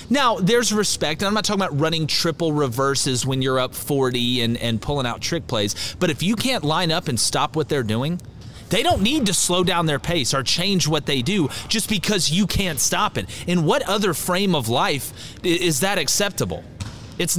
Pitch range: 120-180 Hz